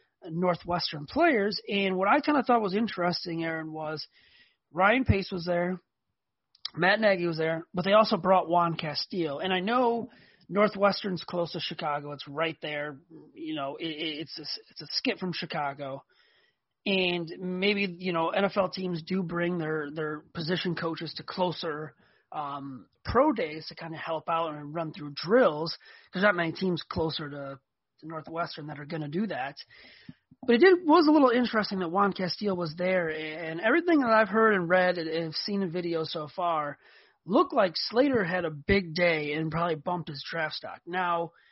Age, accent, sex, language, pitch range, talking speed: 30-49, American, male, English, 160-200 Hz, 180 wpm